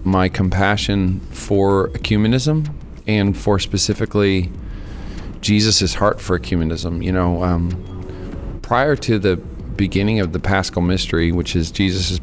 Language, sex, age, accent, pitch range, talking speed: English, male, 40-59, American, 90-105 Hz, 125 wpm